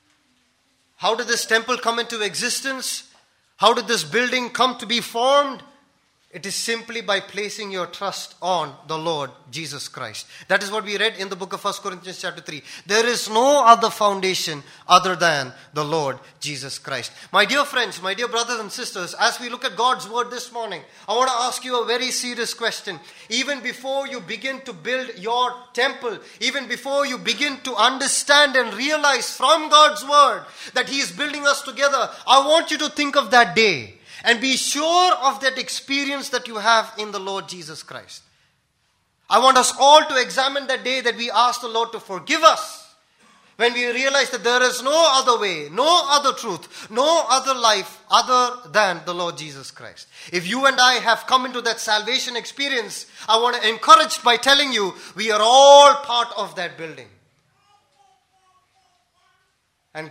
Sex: male